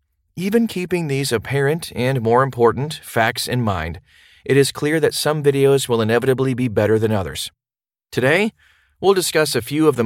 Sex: male